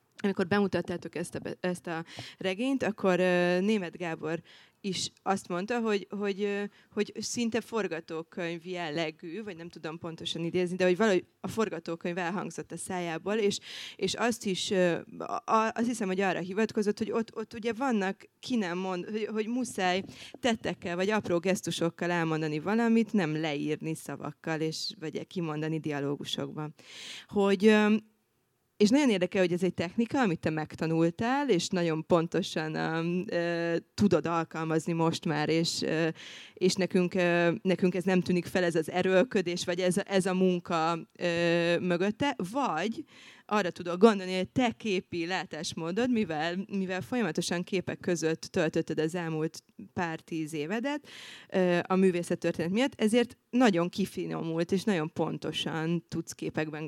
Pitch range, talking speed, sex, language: 165-205 Hz, 145 wpm, female, Hungarian